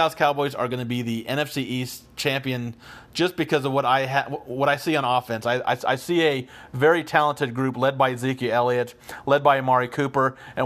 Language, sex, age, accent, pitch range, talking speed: English, male, 40-59, American, 125-145 Hz, 210 wpm